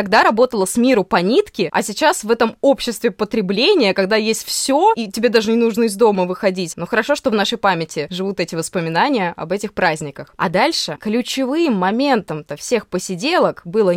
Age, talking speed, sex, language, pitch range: 20-39, 180 wpm, female, Russian, 185-280 Hz